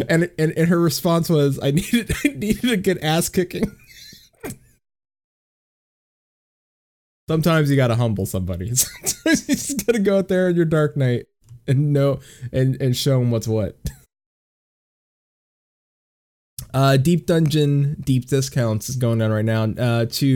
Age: 20-39